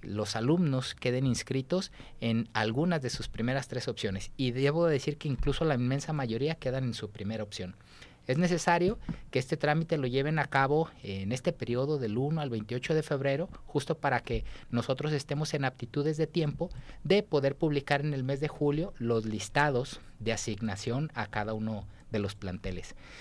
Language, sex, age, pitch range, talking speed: Spanish, male, 40-59, 115-150 Hz, 180 wpm